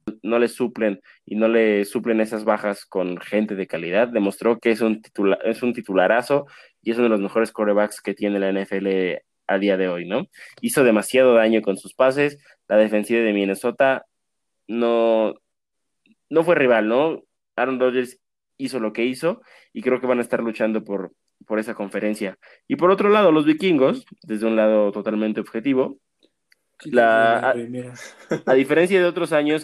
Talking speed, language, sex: 175 wpm, Spanish, male